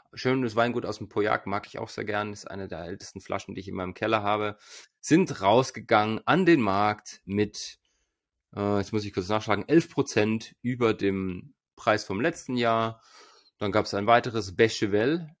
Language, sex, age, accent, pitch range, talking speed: German, male, 30-49, German, 105-130 Hz, 180 wpm